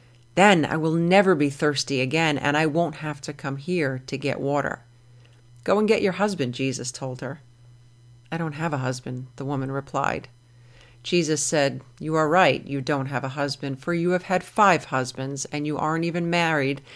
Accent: American